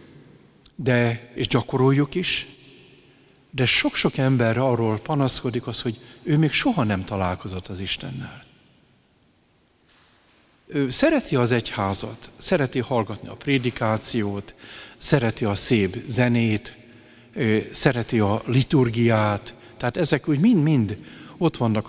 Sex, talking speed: male, 105 wpm